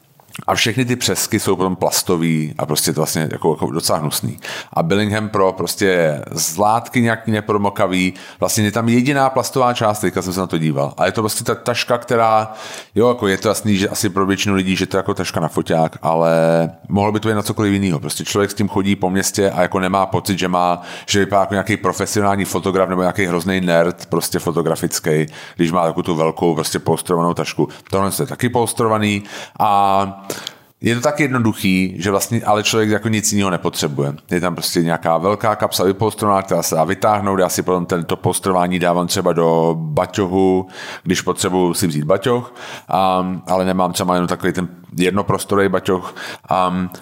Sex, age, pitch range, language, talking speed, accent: male, 30-49, 85-105 Hz, Czech, 195 wpm, native